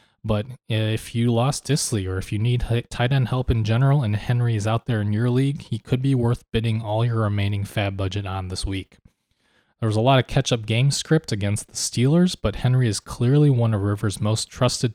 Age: 20-39